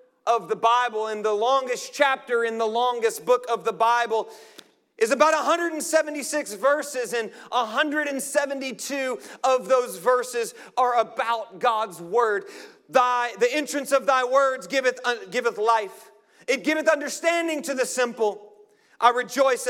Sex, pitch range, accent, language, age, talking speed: male, 225-325 Hz, American, English, 40-59, 135 wpm